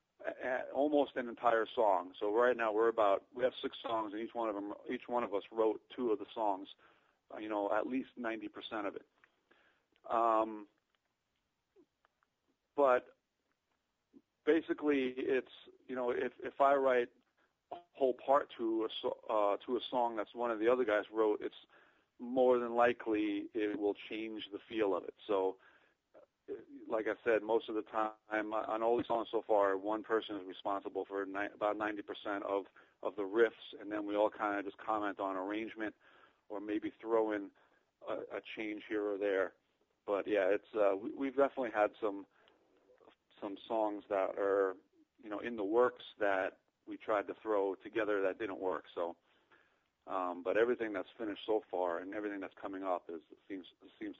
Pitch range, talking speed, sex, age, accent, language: 105-125 Hz, 175 wpm, male, 40-59, American, English